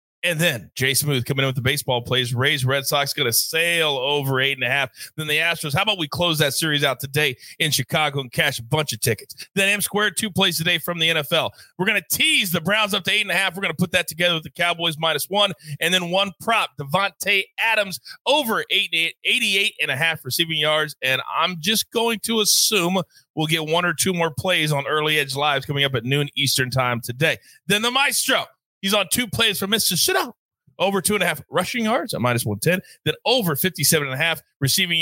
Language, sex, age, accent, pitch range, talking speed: English, male, 30-49, American, 135-190 Hz, 235 wpm